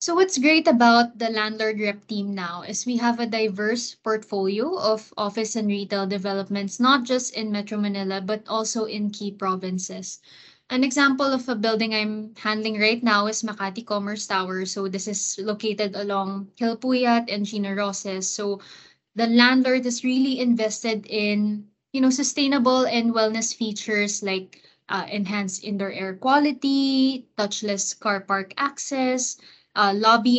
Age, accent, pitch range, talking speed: 20-39, Filipino, 200-235 Hz, 150 wpm